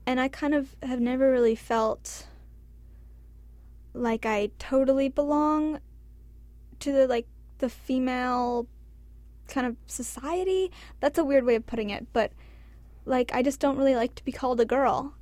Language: English